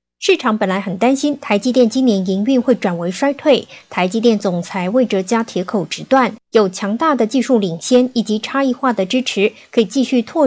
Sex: male